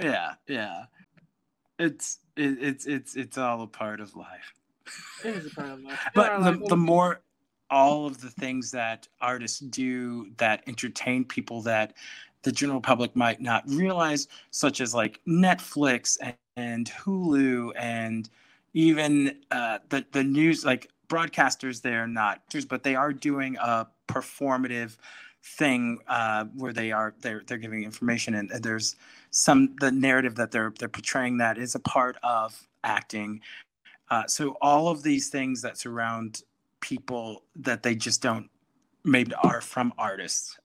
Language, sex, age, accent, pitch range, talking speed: English, male, 30-49, American, 110-135 Hz, 155 wpm